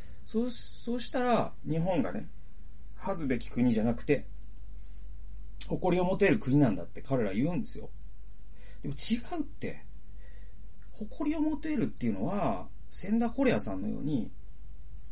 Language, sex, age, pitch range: Japanese, male, 40-59, 100-140 Hz